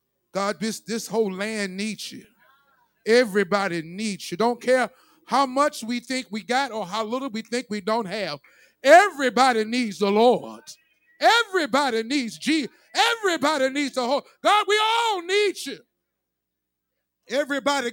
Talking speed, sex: 145 wpm, male